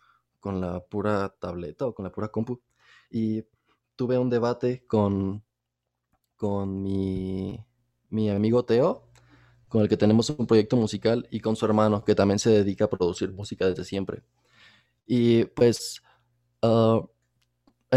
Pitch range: 95-120 Hz